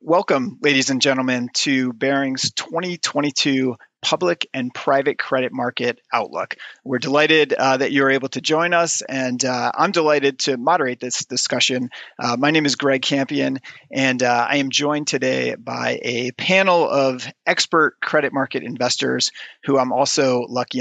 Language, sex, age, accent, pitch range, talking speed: English, male, 30-49, American, 125-150 Hz, 155 wpm